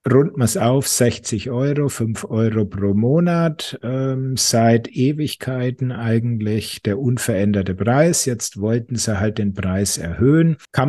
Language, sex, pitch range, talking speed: German, male, 110-135 Hz, 130 wpm